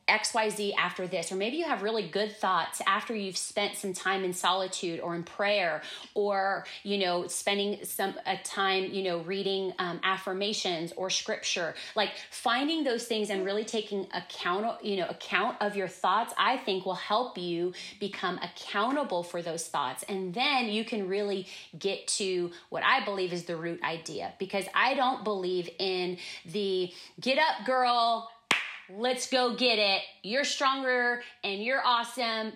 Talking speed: 165 wpm